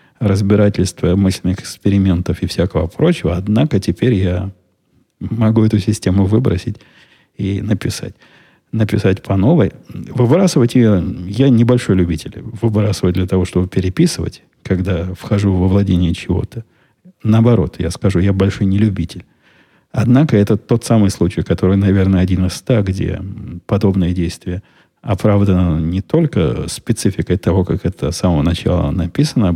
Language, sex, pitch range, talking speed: Russian, male, 90-105 Hz, 130 wpm